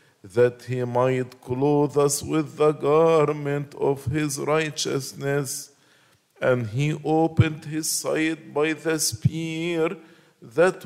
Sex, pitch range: male, 145-160 Hz